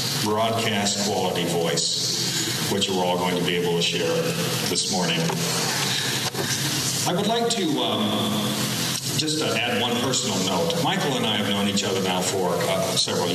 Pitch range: 95-145 Hz